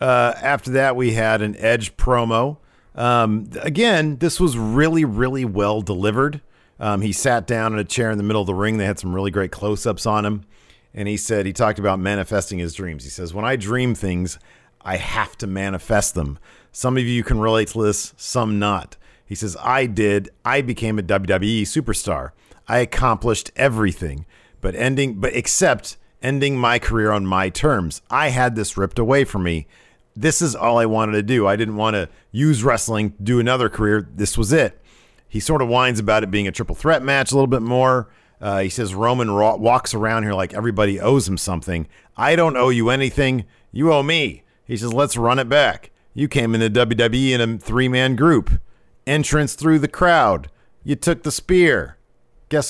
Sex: male